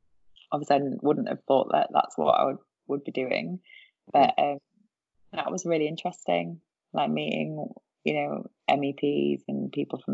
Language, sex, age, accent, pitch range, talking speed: English, female, 20-39, British, 125-145 Hz, 160 wpm